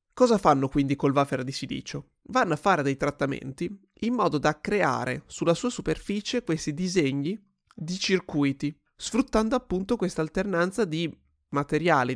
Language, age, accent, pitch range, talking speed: Italian, 30-49, native, 145-195 Hz, 145 wpm